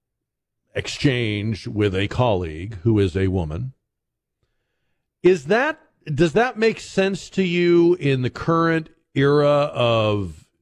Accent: American